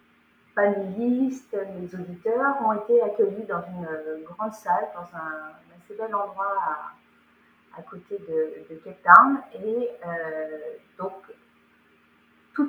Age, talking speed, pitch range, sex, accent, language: 30-49, 130 wpm, 180-230 Hz, female, French, French